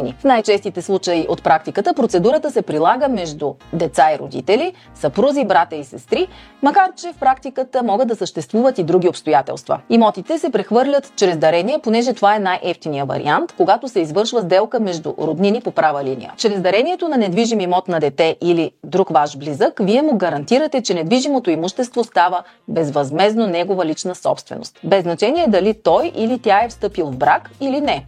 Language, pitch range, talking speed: Bulgarian, 170-240 Hz, 170 wpm